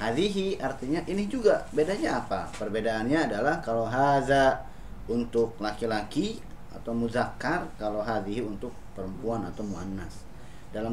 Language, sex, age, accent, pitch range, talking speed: Indonesian, male, 30-49, native, 105-135 Hz, 115 wpm